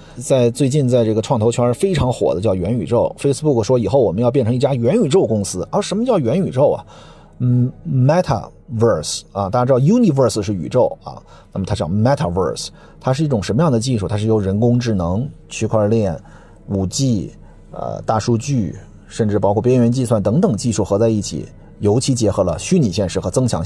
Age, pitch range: 30-49, 100-130 Hz